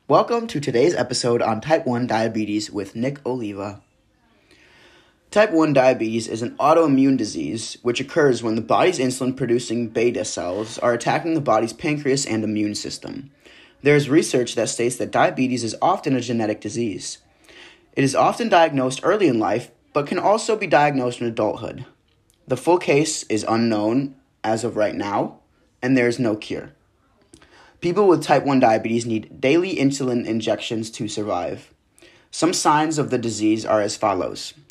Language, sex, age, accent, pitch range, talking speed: English, male, 10-29, American, 110-145 Hz, 165 wpm